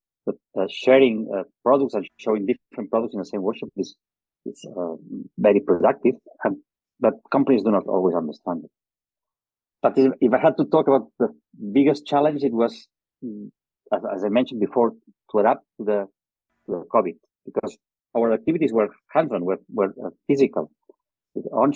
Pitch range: 110-135 Hz